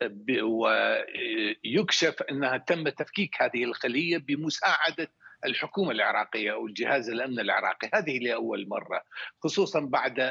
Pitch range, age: 125-200 Hz, 60-79